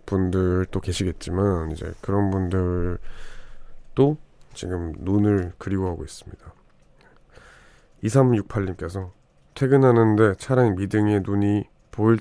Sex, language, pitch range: male, Korean, 90-110 Hz